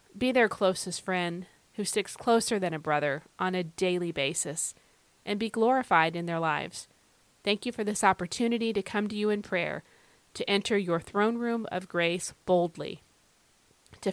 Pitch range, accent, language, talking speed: 175-220 Hz, American, English, 170 wpm